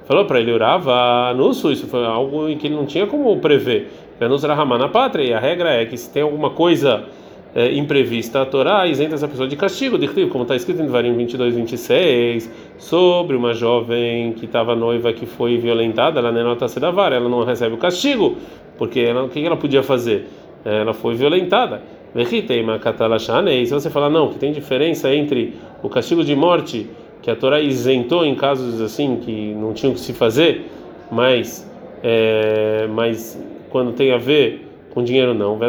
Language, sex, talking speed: Portuguese, male, 175 wpm